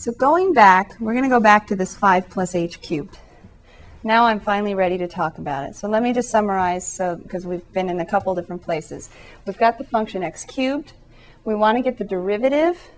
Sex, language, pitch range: female, English, 185-230 Hz